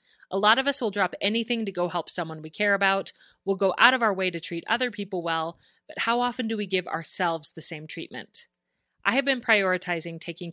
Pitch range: 165-210 Hz